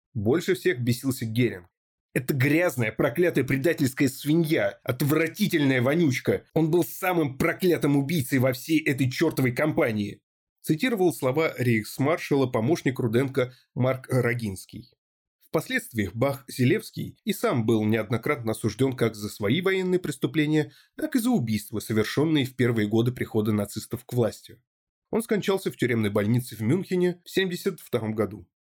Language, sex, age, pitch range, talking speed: Russian, male, 30-49, 115-160 Hz, 130 wpm